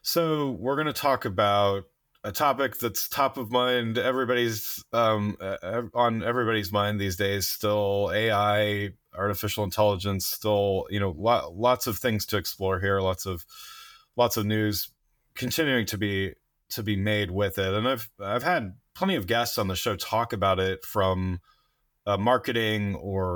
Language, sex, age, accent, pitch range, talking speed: English, male, 30-49, American, 100-120 Hz, 160 wpm